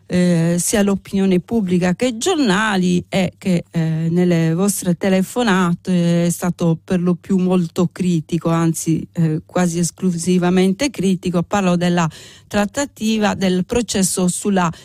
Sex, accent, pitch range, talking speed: female, native, 165-200 Hz, 125 wpm